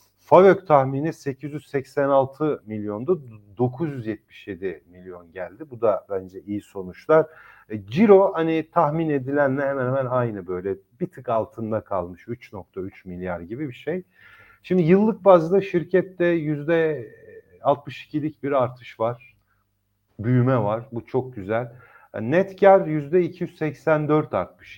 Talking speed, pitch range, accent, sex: 110 wpm, 115-155 Hz, native, male